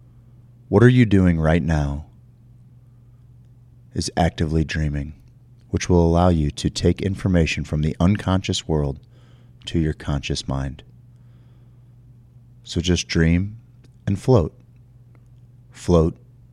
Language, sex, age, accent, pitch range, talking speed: English, male, 30-49, American, 90-125 Hz, 110 wpm